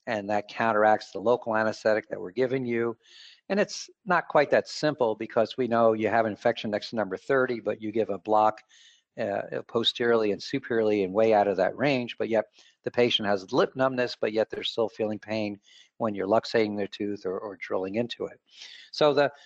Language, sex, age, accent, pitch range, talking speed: English, male, 50-69, American, 110-130 Hz, 205 wpm